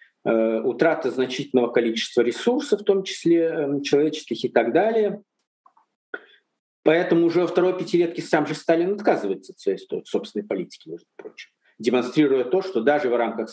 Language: Russian